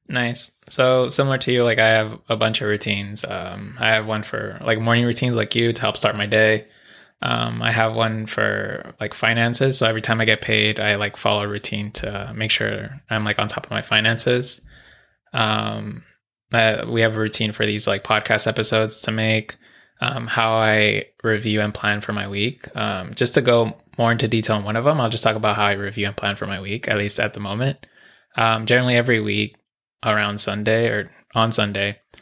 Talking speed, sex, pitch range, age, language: 210 wpm, male, 105-115 Hz, 20-39, English